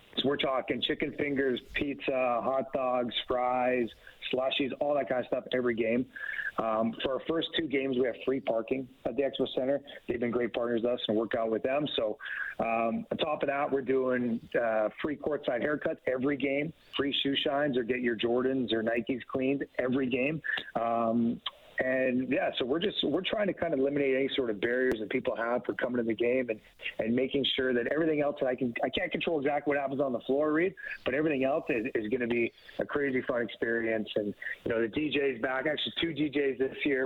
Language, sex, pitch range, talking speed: English, male, 120-140 Hz, 215 wpm